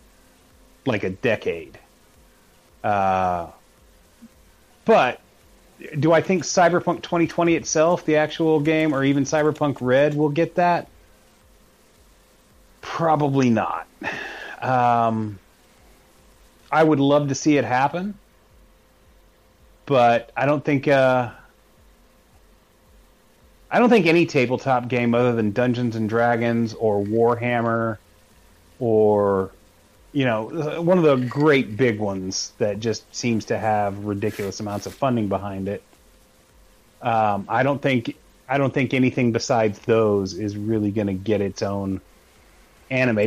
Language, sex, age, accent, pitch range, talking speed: English, male, 30-49, American, 105-140 Hz, 120 wpm